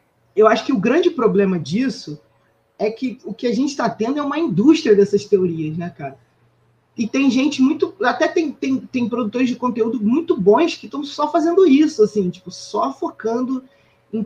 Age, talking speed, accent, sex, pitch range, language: 20-39, 190 wpm, Brazilian, male, 180-245 Hz, Portuguese